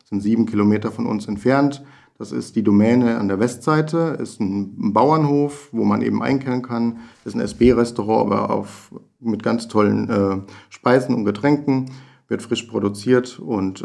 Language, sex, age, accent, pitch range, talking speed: German, male, 50-69, German, 100-120 Hz, 160 wpm